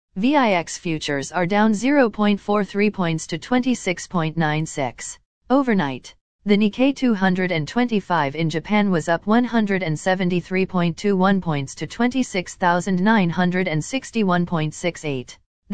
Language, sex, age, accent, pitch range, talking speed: English, female, 40-59, American, 170-215 Hz, 75 wpm